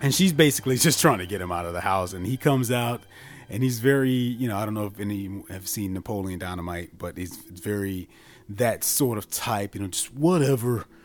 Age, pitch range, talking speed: 30-49, 95-150 Hz, 225 wpm